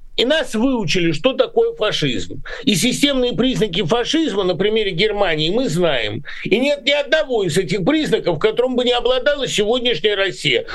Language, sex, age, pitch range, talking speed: Russian, male, 50-69, 190-265 Hz, 155 wpm